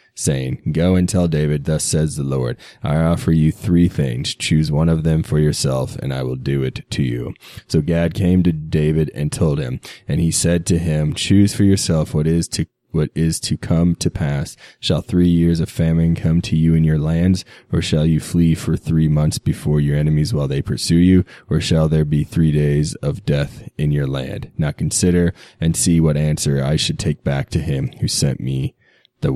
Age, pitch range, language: 20-39, 75-85 Hz, English